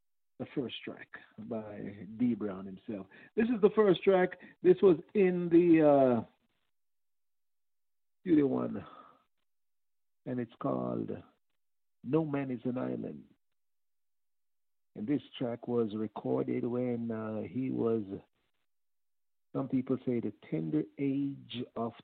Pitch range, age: 110-140 Hz, 50-69